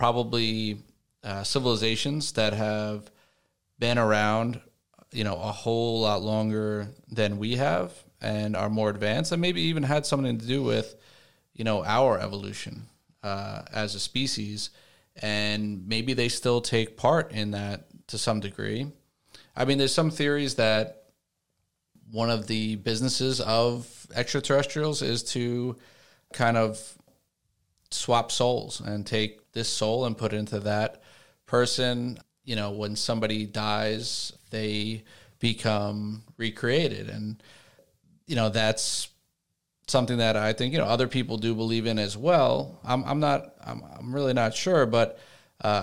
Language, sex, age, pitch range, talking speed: English, male, 30-49, 105-130 Hz, 145 wpm